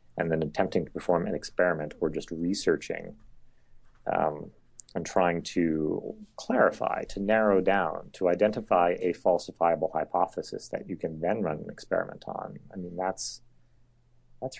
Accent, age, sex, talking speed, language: American, 30-49, male, 145 wpm, English